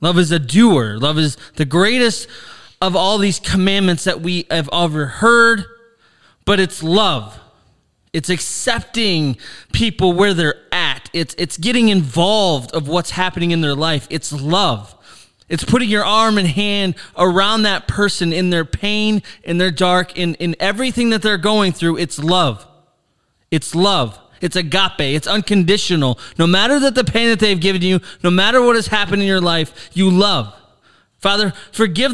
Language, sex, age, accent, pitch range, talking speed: English, male, 20-39, American, 165-220 Hz, 165 wpm